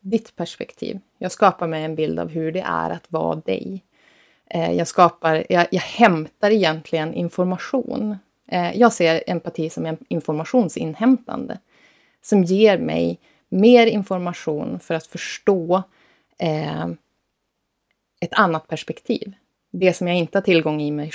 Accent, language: native, Swedish